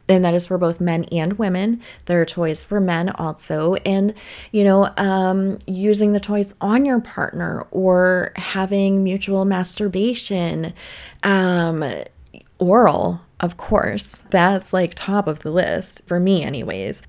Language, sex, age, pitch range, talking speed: English, female, 20-39, 170-200 Hz, 145 wpm